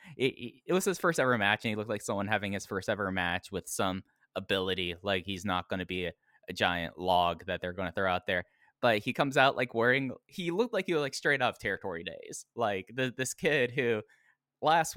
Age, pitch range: 20-39, 95-125 Hz